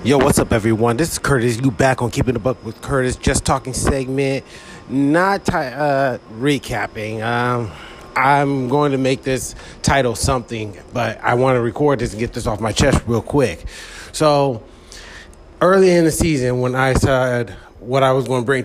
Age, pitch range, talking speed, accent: 30-49, 115-135 Hz, 185 wpm, American